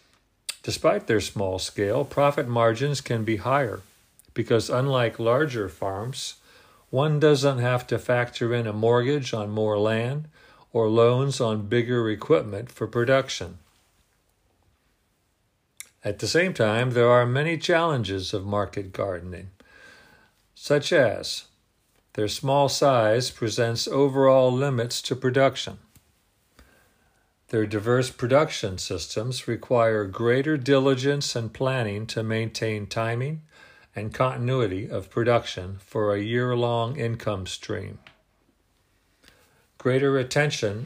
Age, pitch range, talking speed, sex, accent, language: 50-69, 105-130 Hz, 110 wpm, male, American, English